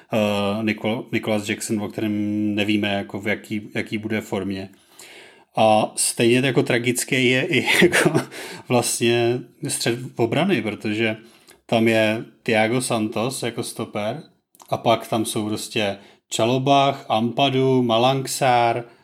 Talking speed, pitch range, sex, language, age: 115 wpm, 105-120 Hz, male, Czech, 30-49